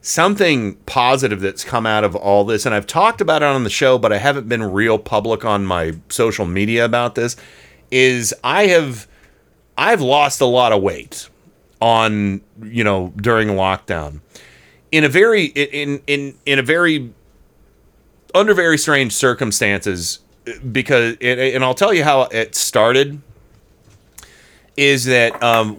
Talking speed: 150 wpm